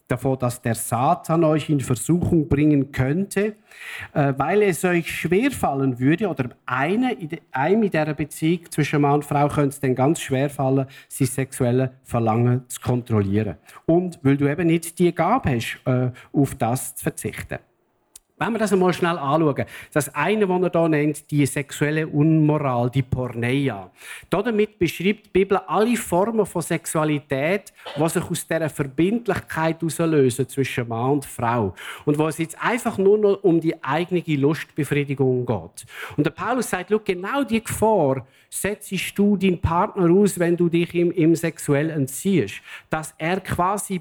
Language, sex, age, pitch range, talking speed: German, male, 50-69, 135-180 Hz, 160 wpm